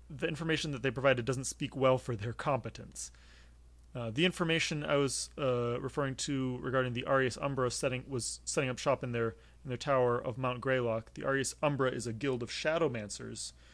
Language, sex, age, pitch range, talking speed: English, male, 30-49, 115-140 Hz, 190 wpm